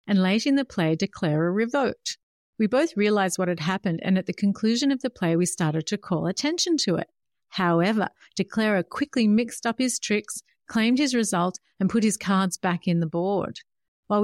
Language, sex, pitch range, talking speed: English, female, 175-215 Hz, 195 wpm